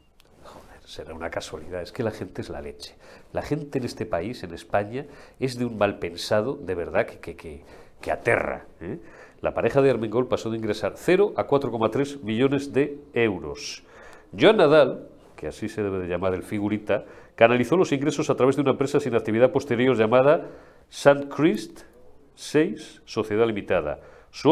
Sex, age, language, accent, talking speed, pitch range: male, 40-59, Spanish, Spanish, 170 wpm, 105-135 Hz